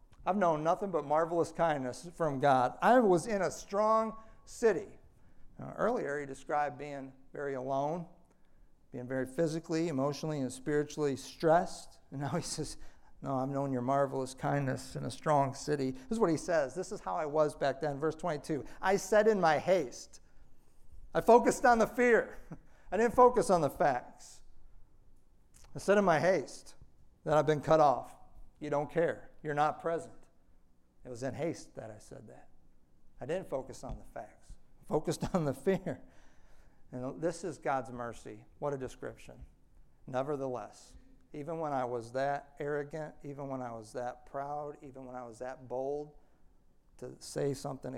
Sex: male